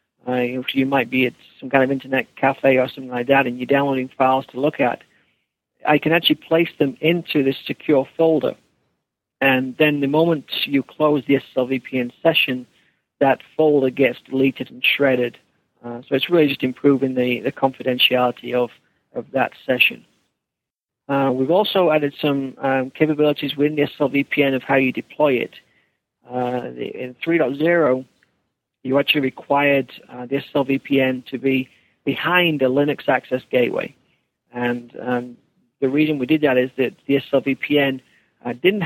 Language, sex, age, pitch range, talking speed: English, male, 50-69, 130-145 Hz, 165 wpm